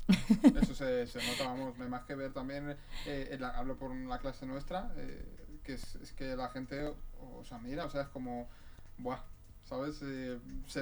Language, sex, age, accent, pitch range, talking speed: Spanish, male, 20-39, Spanish, 125-155 Hz, 200 wpm